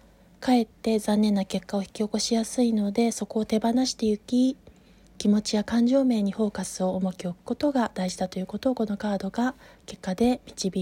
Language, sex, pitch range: Japanese, female, 190-230 Hz